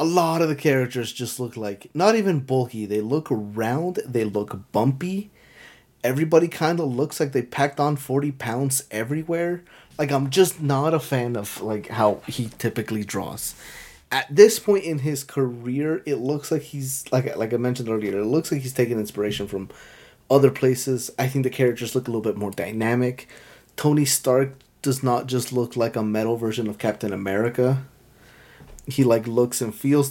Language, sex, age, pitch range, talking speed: English, male, 30-49, 115-145 Hz, 185 wpm